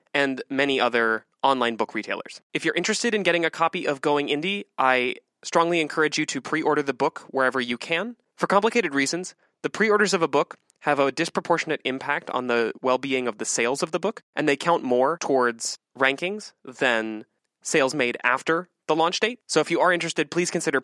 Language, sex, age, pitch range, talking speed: English, male, 20-39, 125-165 Hz, 195 wpm